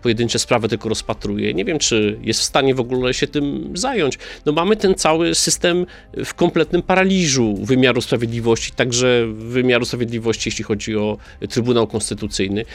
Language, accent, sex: Polish, native, male